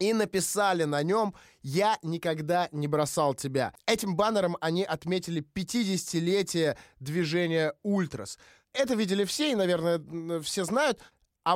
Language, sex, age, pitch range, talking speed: Russian, male, 20-39, 170-215 Hz, 125 wpm